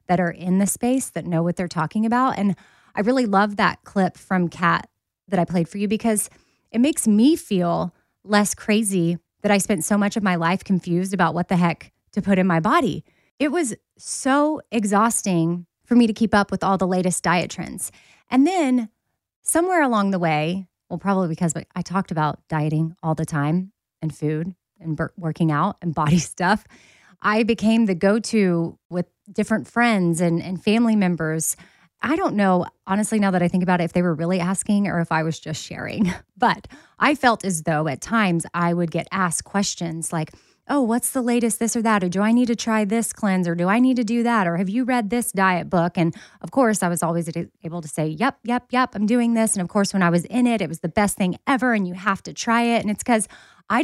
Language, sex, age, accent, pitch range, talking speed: English, female, 20-39, American, 170-225 Hz, 225 wpm